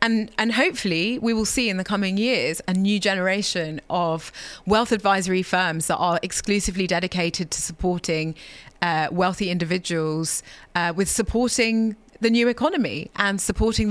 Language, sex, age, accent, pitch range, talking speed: English, female, 30-49, British, 170-205 Hz, 145 wpm